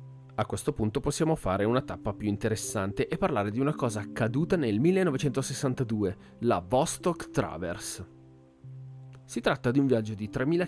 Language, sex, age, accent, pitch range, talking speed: Italian, male, 30-49, native, 105-145 Hz, 150 wpm